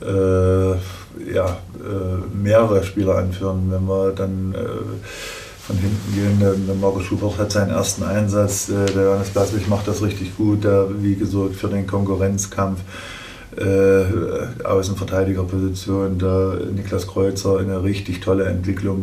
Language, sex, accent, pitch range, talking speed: German, male, German, 95-105 Hz, 140 wpm